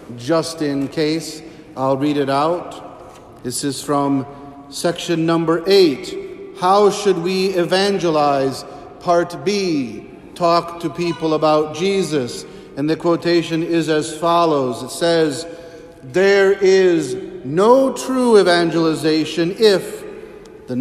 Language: English